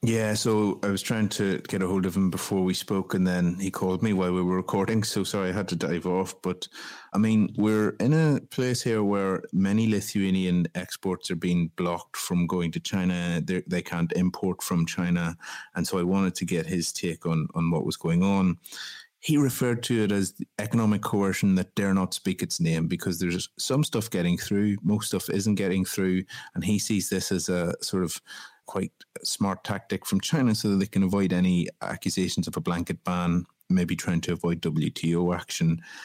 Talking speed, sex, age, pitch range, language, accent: 205 wpm, male, 30-49, 85-100 Hz, English, Irish